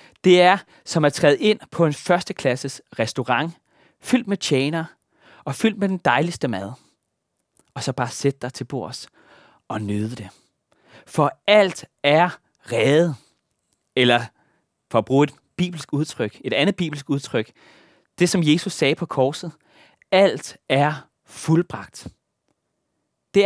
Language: Danish